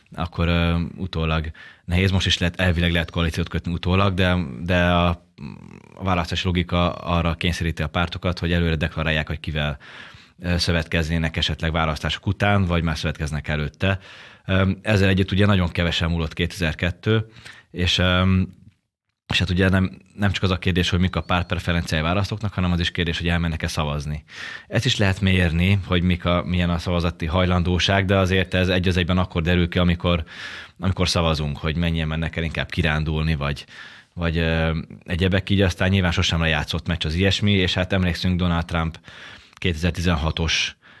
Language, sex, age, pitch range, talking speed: Hungarian, male, 20-39, 85-95 Hz, 165 wpm